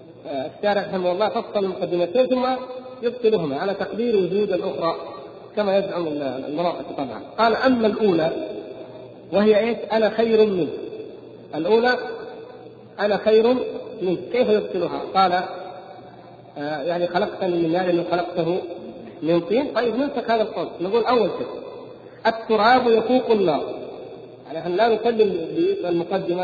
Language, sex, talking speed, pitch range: Arabic, male, 125 wpm, 180-225 Hz